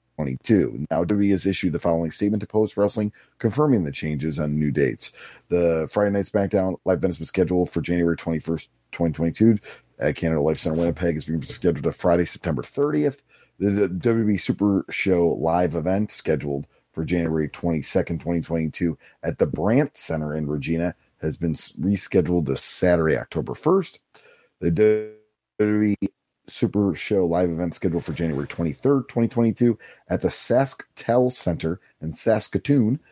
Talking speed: 150 wpm